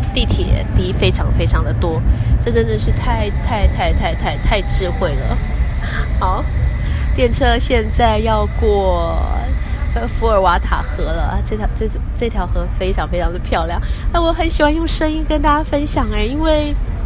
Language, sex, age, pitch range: Chinese, female, 20-39, 95-115 Hz